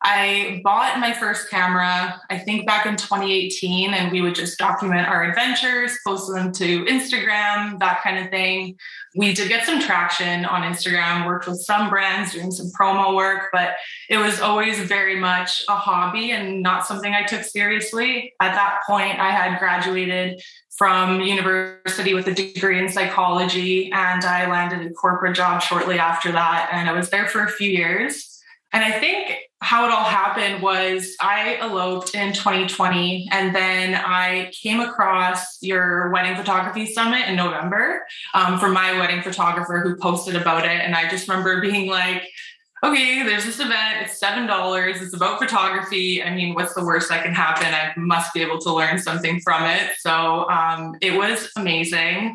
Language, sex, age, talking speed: English, female, 20-39, 175 wpm